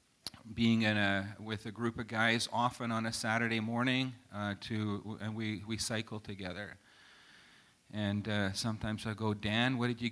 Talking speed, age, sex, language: 170 wpm, 40-59, male, English